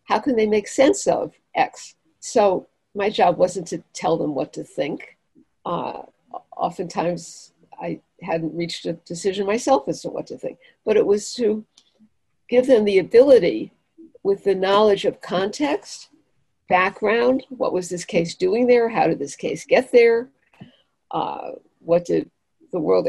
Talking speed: 160 wpm